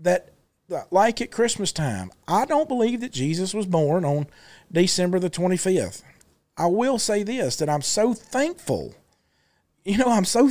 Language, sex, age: English, male, 40-59